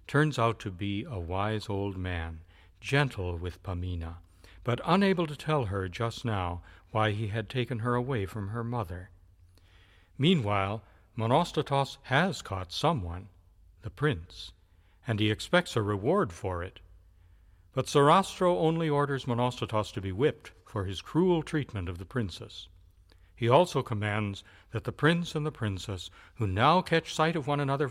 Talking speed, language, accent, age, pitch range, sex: 155 wpm, English, American, 60-79, 90-135 Hz, male